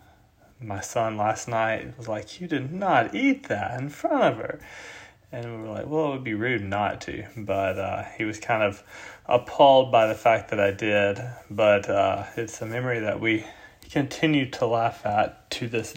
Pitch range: 100-115 Hz